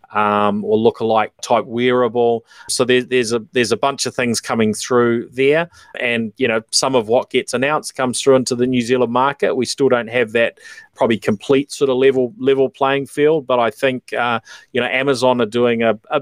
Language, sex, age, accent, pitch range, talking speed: English, male, 30-49, Australian, 110-130 Hz, 205 wpm